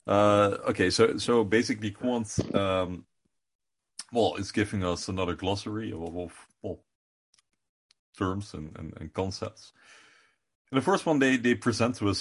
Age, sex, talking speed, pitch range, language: 30-49, male, 145 wpm, 90-110 Hz, English